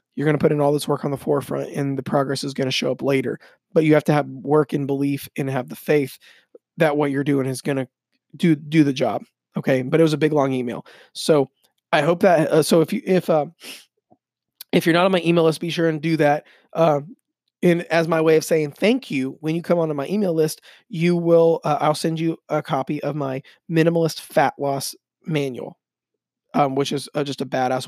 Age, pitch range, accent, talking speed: 20-39, 140-165 Hz, American, 240 wpm